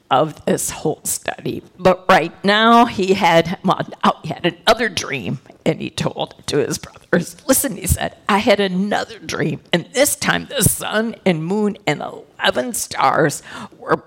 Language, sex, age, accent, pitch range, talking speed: English, female, 50-69, American, 165-210 Hz, 155 wpm